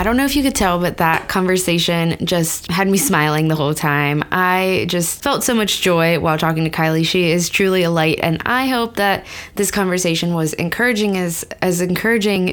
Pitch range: 165-200 Hz